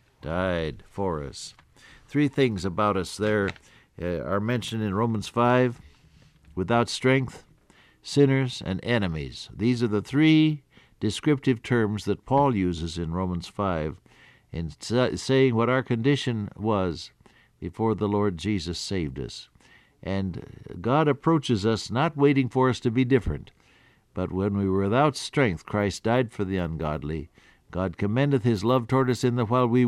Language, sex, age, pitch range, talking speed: English, male, 60-79, 95-130 Hz, 150 wpm